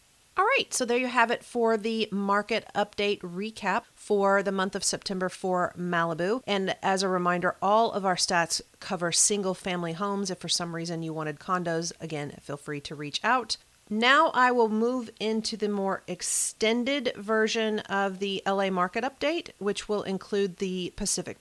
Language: English